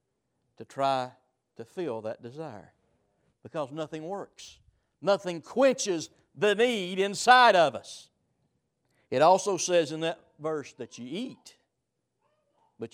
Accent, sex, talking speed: American, male, 120 wpm